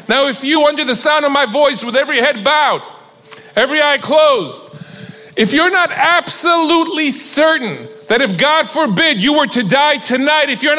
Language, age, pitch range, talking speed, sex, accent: English, 40-59, 230-345 Hz, 180 wpm, male, American